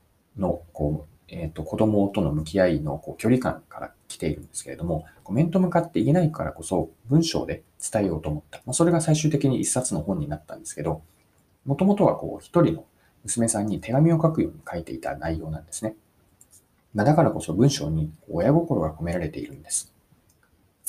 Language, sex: Japanese, male